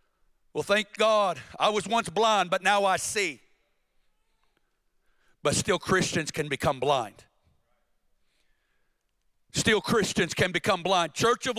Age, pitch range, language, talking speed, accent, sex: 60-79, 205-265 Hz, English, 125 wpm, American, male